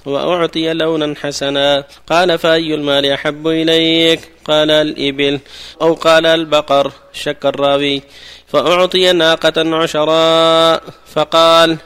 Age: 30-49